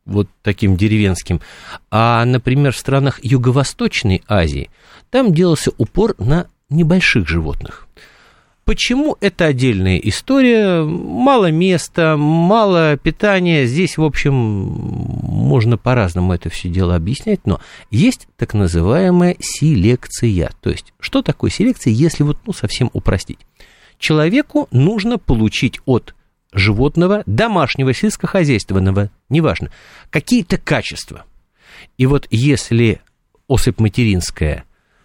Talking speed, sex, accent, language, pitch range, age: 105 wpm, male, native, Russian, 95-160 Hz, 50-69